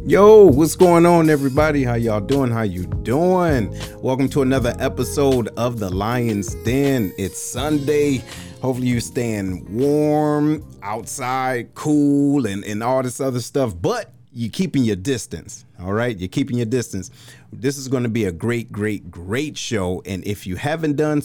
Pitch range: 105-145 Hz